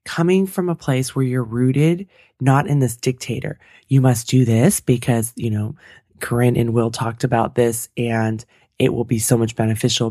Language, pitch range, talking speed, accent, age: English, 120-145 Hz, 185 wpm, American, 20-39